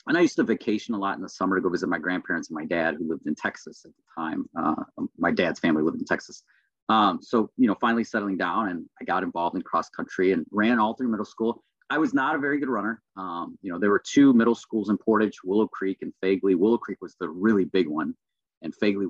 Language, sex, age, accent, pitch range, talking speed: English, male, 30-49, American, 95-120 Hz, 260 wpm